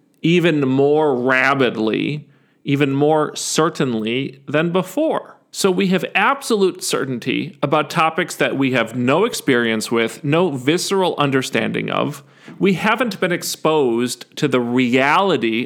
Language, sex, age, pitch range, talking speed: English, male, 40-59, 135-195 Hz, 125 wpm